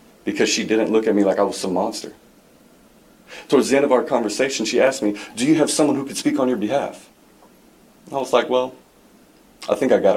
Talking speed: 225 wpm